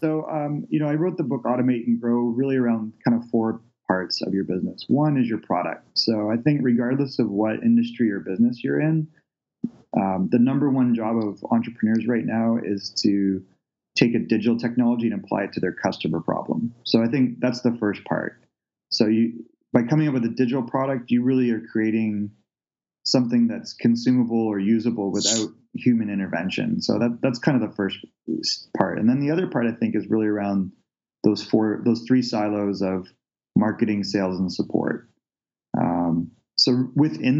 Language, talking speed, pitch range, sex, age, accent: English, 185 wpm, 110-130 Hz, male, 30-49, American